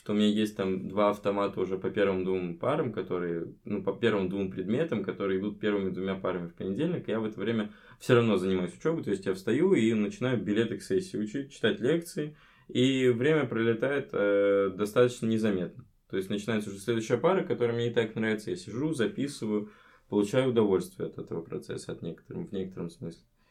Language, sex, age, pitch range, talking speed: Russian, male, 20-39, 95-115 Hz, 190 wpm